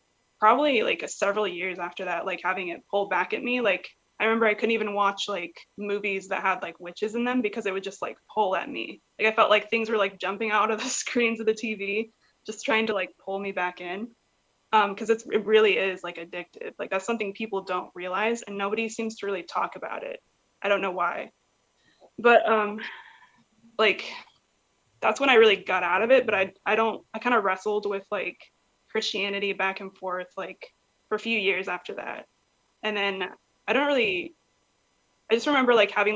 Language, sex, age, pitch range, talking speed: English, female, 20-39, 185-225 Hz, 210 wpm